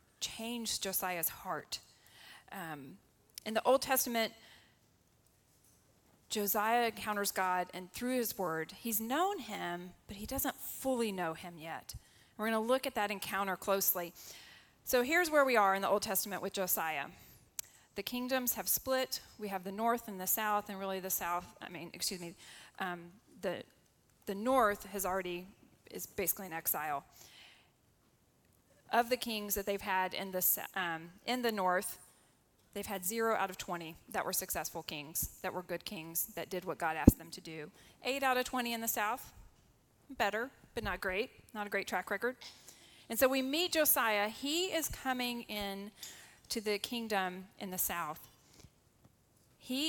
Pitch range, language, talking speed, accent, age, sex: 180-235 Hz, English, 165 wpm, American, 30-49, female